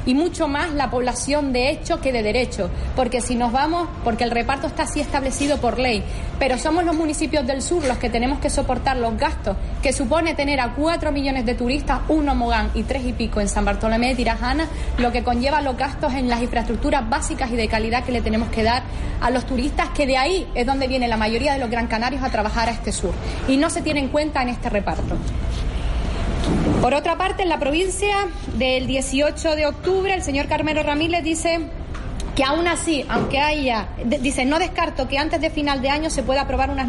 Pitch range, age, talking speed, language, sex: 245-305 Hz, 30-49, 215 wpm, Spanish, female